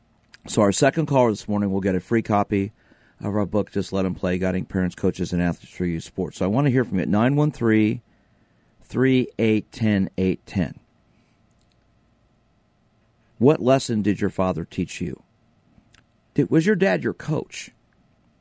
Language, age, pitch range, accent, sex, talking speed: English, 50-69, 95-120 Hz, American, male, 155 wpm